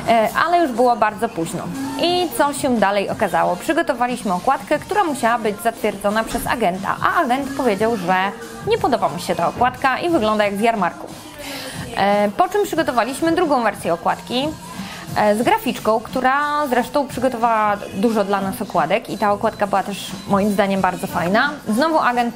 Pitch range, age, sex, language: 205-275 Hz, 20-39, female, Polish